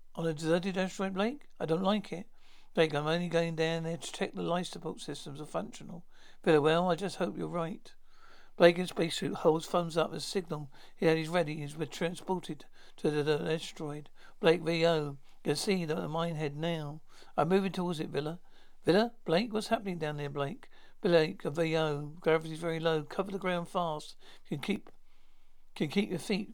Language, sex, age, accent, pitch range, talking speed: English, male, 60-79, British, 155-180 Hz, 190 wpm